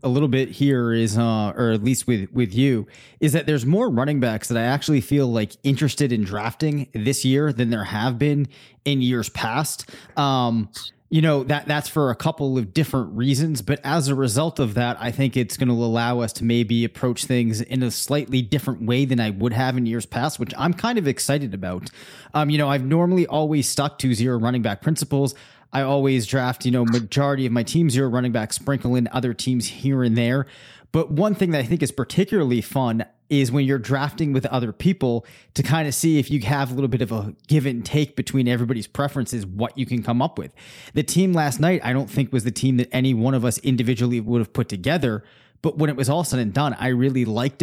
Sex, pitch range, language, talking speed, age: male, 120-145 Hz, English, 230 wpm, 20-39